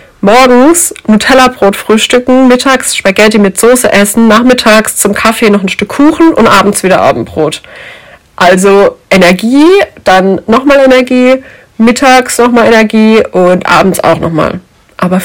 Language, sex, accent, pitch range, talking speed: German, female, German, 180-220 Hz, 125 wpm